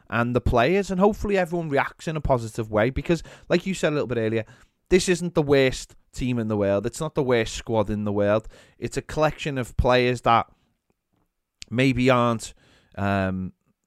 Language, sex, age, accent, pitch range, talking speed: English, male, 30-49, British, 110-140 Hz, 190 wpm